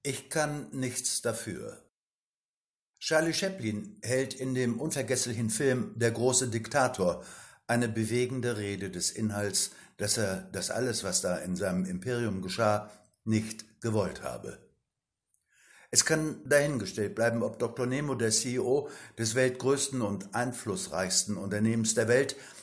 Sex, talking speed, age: male, 125 wpm, 60-79